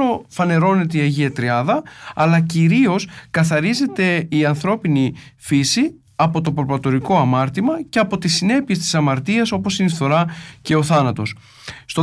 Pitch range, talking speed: 145-195 Hz, 140 wpm